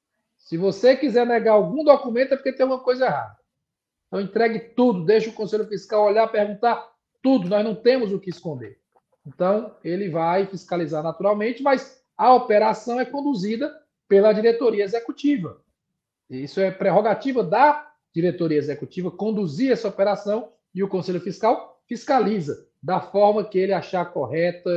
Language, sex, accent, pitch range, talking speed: Portuguese, male, Brazilian, 175-220 Hz, 150 wpm